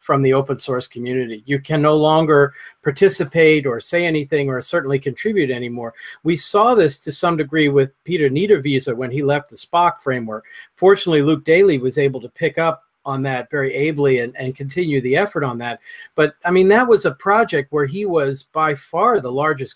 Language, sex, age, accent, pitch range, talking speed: English, male, 40-59, American, 140-175 Hz, 195 wpm